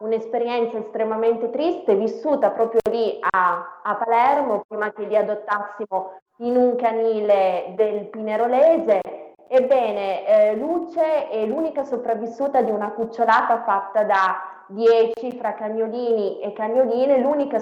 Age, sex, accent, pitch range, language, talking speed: 20-39, female, native, 195-230 Hz, Italian, 120 wpm